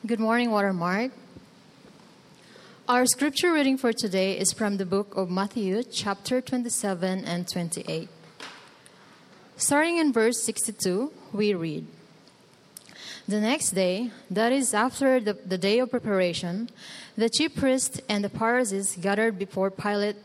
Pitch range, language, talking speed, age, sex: 190-250 Hz, English, 130 wpm, 20-39, female